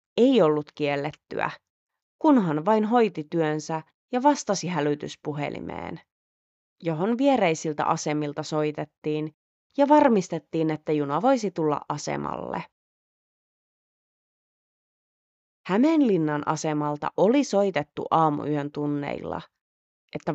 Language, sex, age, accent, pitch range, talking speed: Finnish, female, 30-49, native, 150-210 Hz, 85 wpm